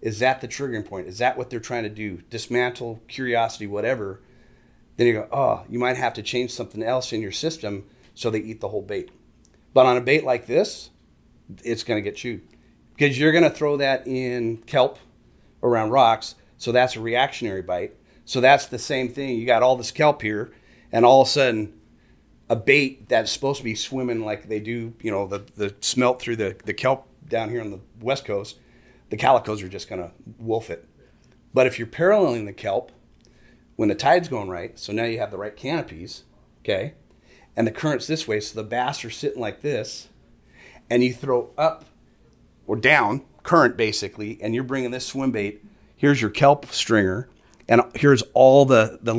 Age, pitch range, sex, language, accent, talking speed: 40-59, 110-130 Hz, male, English, American, 200 wpm